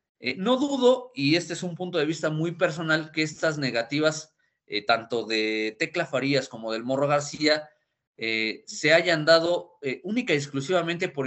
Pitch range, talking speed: 130-170 Hz, 175 wpm